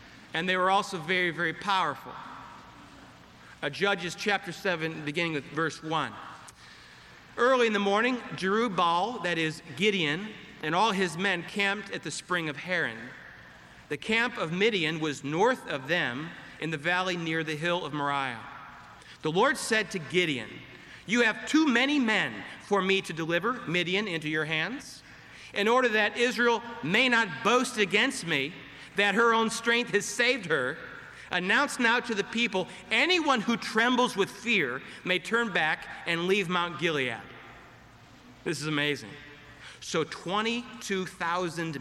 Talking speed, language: 150 wpm, English